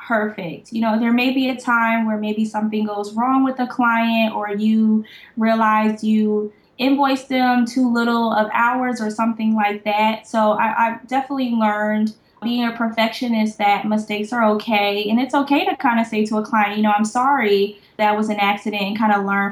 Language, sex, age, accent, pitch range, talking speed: English, female, 10-29, American, 205-230 Hz, 195 wpm